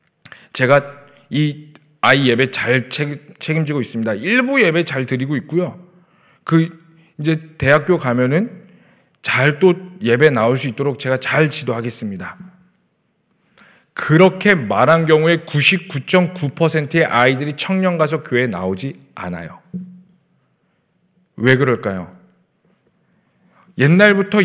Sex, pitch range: male, 140-190 Hz